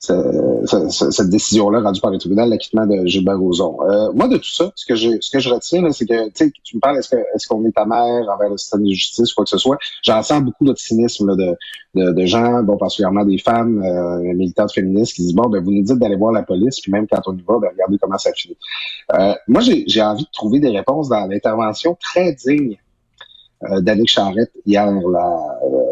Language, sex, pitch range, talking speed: French, male, 100-145 Hz, 235 wpm